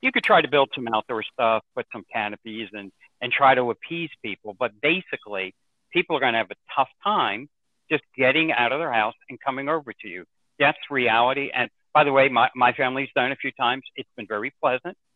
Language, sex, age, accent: English, male, 60-79, American